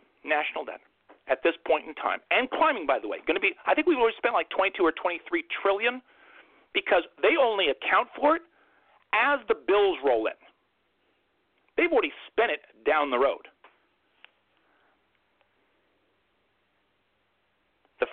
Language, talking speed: English, 145 wpm